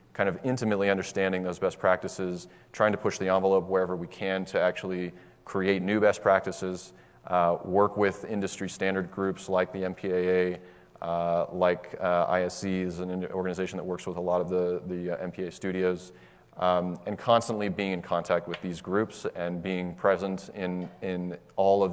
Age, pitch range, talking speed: 30-49, 90-95 Hz, 175 wpm